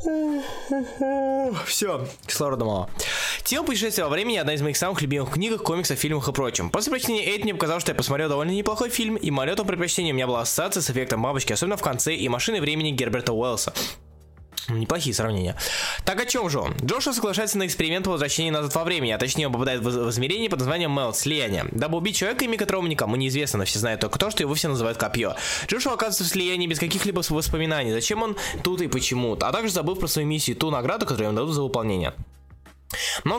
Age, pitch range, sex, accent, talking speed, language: 20-39, 130-190 Hz, male, native, 205 wpm, Russian